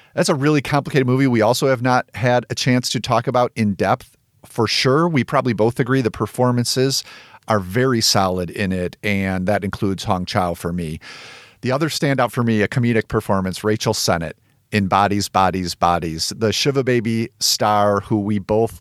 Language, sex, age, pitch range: English, male, 40-59, 95-130 Hz